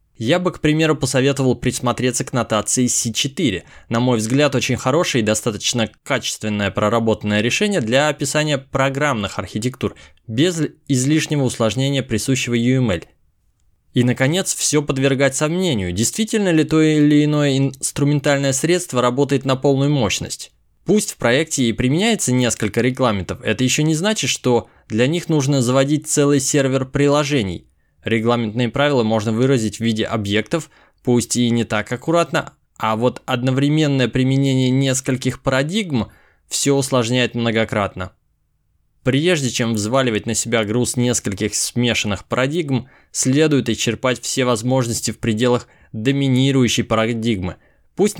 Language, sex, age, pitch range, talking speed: Russian, male, 20-39, 110-145 Hz, 125 wpm